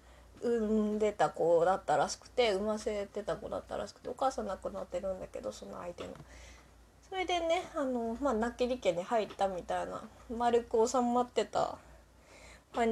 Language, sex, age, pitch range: Japanese, female, 20-39, 190-270 Hz